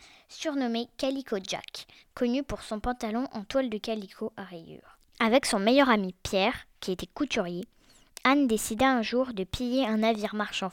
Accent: French